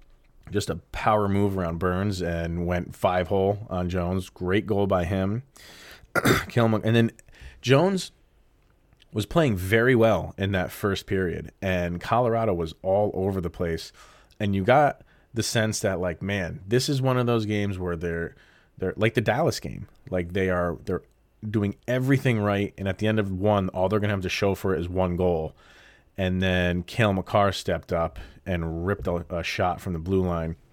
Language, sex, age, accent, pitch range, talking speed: English, male, 30-49, American, 90-110 Hz, 185 wpm